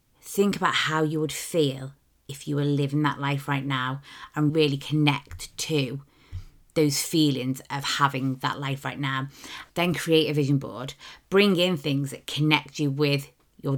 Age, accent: 20-39, British